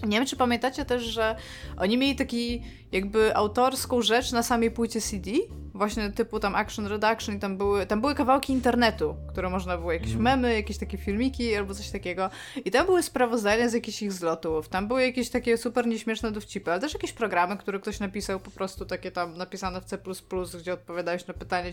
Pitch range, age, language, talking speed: 185-240 Hz, 20-39, Polish, 195 wpm